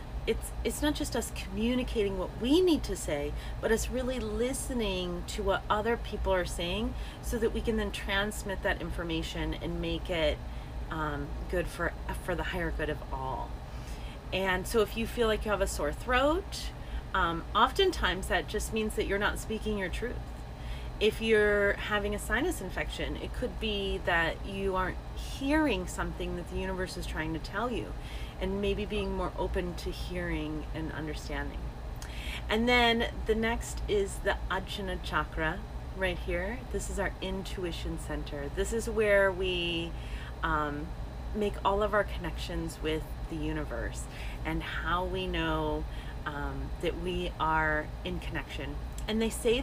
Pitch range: 155-215 Hz